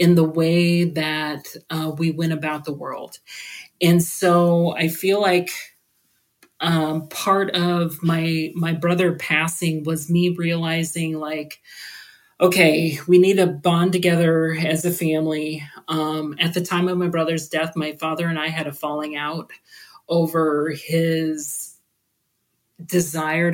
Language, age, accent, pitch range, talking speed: English, 30-49, American, 155-175 Hz, 140 wpm